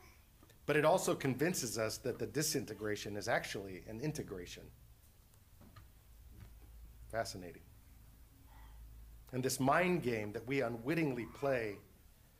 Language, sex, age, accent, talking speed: English, male, 50-69, American, 100 wpm